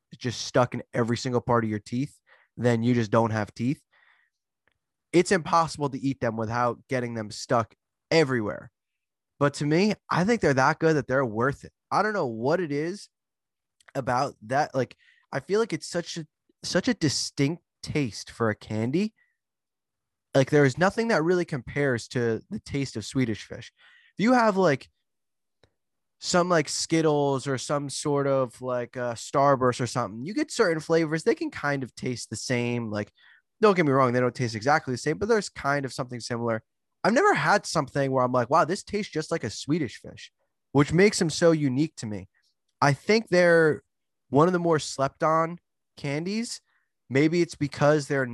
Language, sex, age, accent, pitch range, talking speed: English, male, 20-39, American, 120-165 Hz, 190 wpm